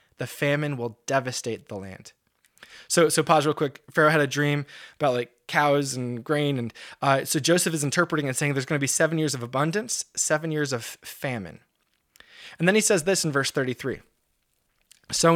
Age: 20-39